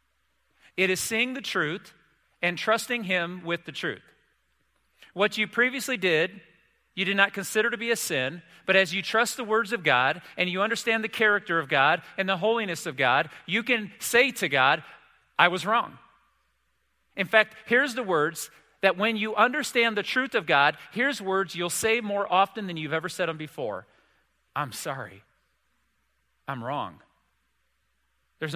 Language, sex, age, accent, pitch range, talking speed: English, male, 40-59, American, 140-220 Hz, 170 wpm